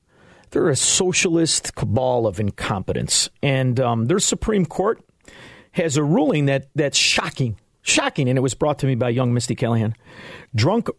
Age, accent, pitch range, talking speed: 40-59, American, 115-150 Hz, 155 wpm